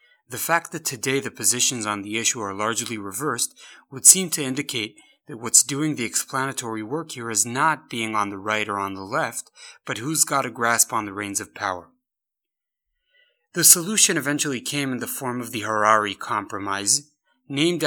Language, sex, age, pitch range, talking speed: English, male, 30-49, 115-145 Hz, 185 wpm